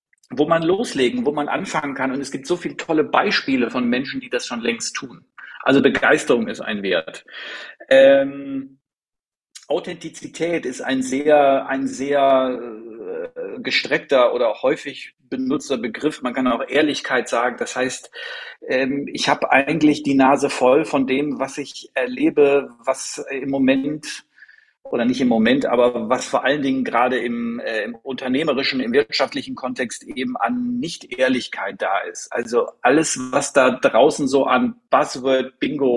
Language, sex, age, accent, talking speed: German, male, 40-59, German, 150 wpm